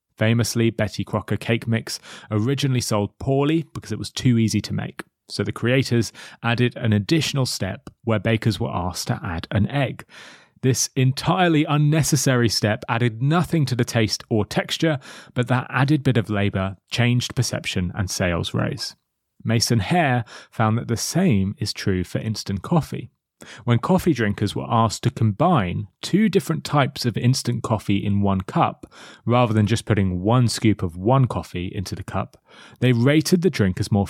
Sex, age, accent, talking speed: male, 30-49, British, 170 wpm